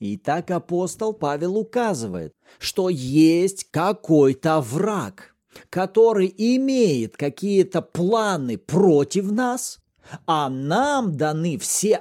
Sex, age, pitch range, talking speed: male, 40-59, 150-220 Hz, 95 wpm